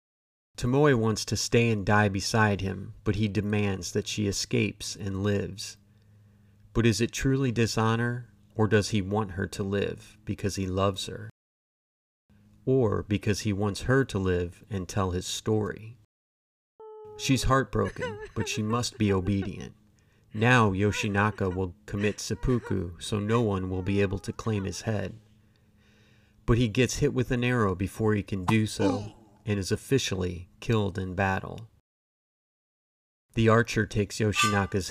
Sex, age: male, 30-49